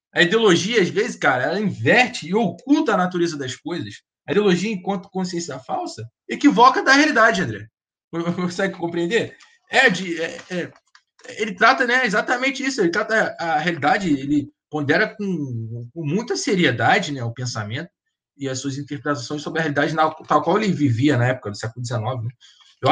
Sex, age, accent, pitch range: male, 20-39, Brazilian, 120-175 Hz